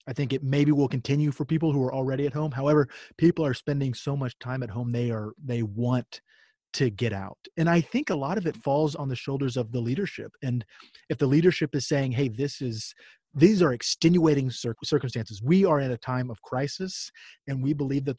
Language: English